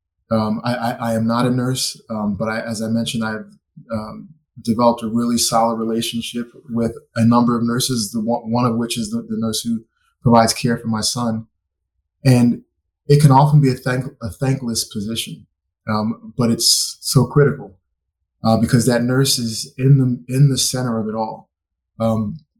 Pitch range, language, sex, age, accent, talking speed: 110-130 Hz, English, male, 20-39, American, 185 wpm